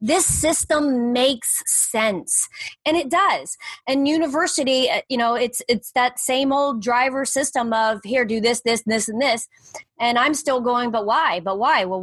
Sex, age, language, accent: female, 30-49, English, American